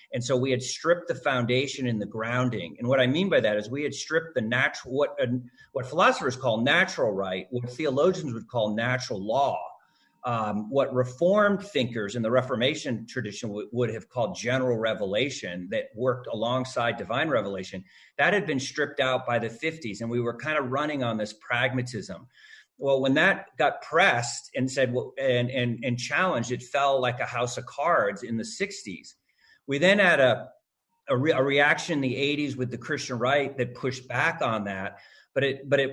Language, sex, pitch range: English, male, 115-140 Hz